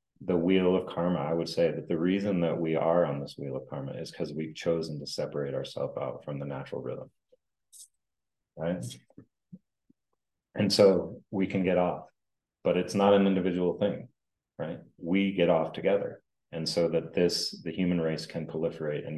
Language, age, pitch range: English, 30-49, 80-95 Hz